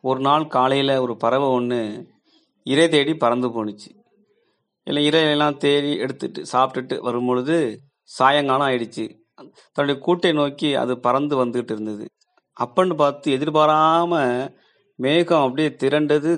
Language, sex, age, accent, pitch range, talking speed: Tamil, male, 30-49, native, 130-170 Hz, 110 wpm